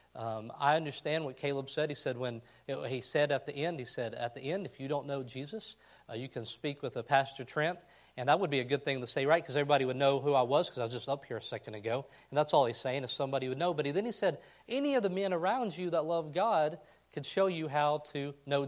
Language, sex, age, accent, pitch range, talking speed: English, male, 40-59, American, 130-170 Hz, 275 wpm